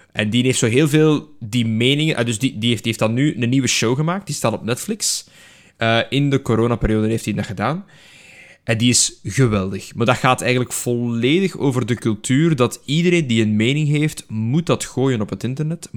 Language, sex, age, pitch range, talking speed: Dutch, male, 20-39, 105-135 Hz, 215 wpm